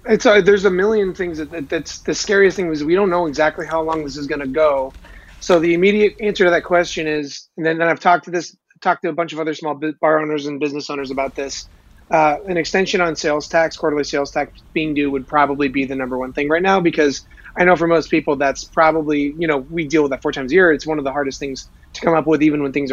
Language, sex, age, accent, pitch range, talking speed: English, male, 30-49, American, 140-165 Hz, 270 wpm